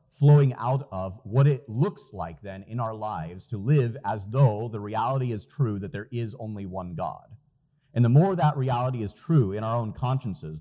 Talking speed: 205 wpm